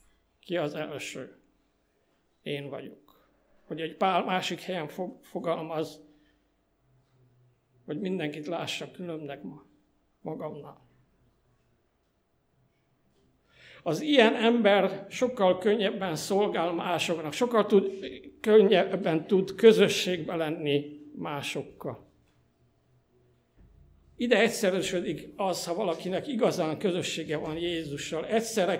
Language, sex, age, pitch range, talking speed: Hungarian, male, 60-79, 135-195 Hz, 80 wpm